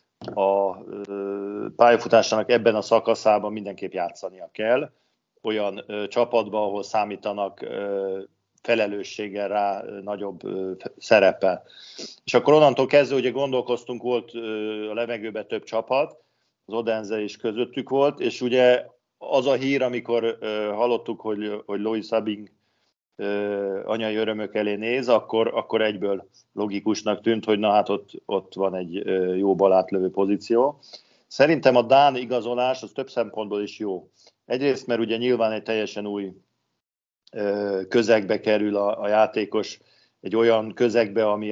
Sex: male